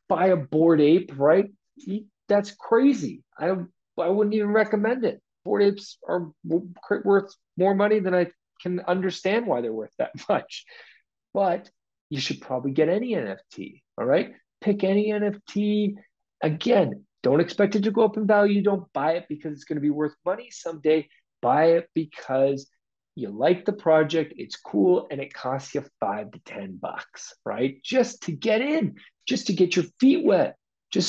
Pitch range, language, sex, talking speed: 155-210 Hz, English, male, 170 wpm